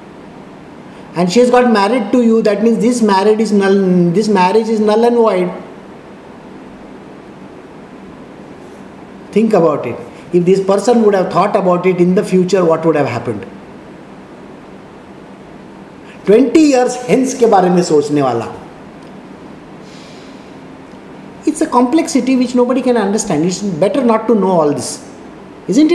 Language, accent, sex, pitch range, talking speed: English, Indian, male, 165-230 Hz, 140 wpm